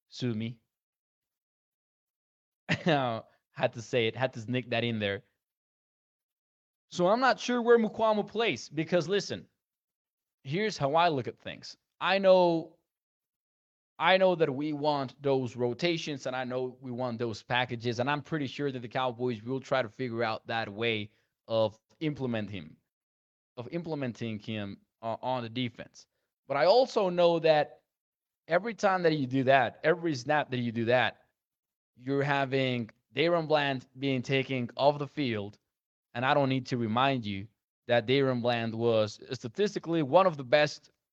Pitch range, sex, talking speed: 120-155 Hz, male, 160 wpm